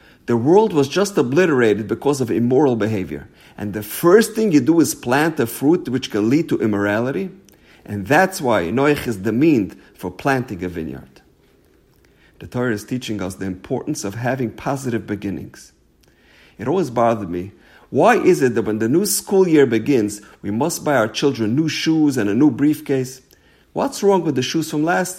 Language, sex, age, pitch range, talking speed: English, male, 50-69, 110-160 Hz, 185 wpm